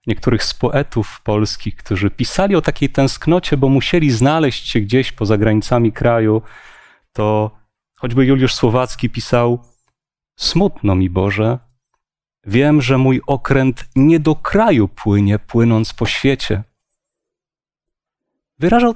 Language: Polish